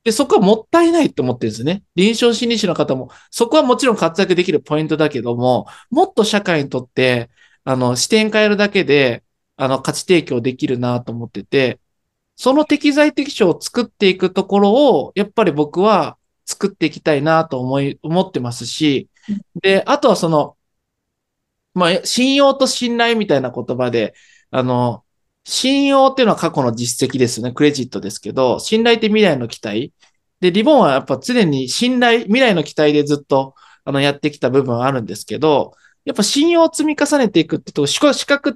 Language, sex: Japanese, male